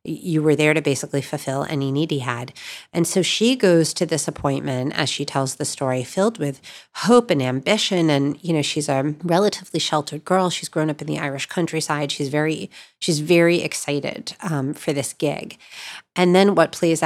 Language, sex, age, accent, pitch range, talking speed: English, female, 40-59, American, 140-170 Hz, 195 wpm